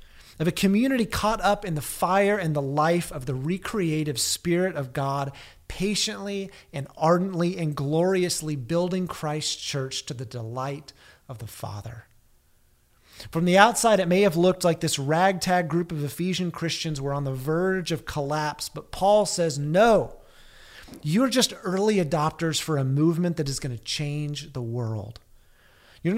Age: 30-49